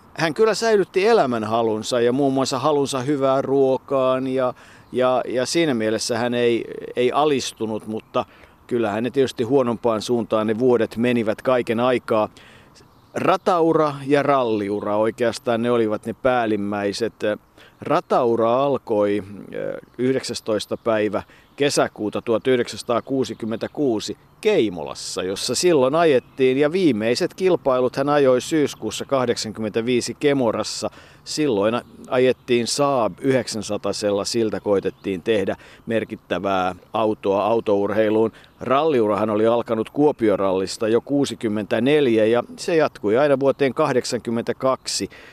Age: 50-69